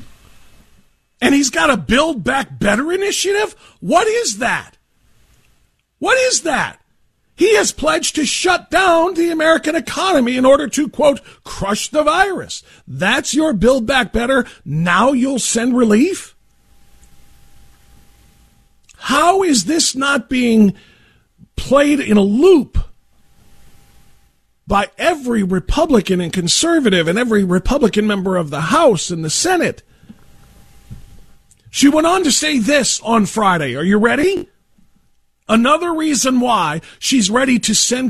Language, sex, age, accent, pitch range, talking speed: English, male, 50-69, American, 200-290 Hz, 130 wpm